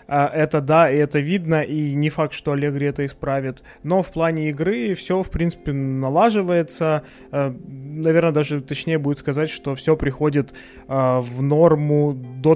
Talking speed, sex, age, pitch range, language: 150 wpm, male, 20-39, 145-175 Hz, Ukrainian